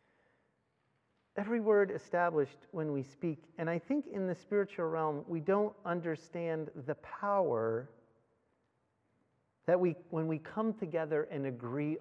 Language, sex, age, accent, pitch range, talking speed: English, male, 40-59, American, 150-215 Hz, 130 wpm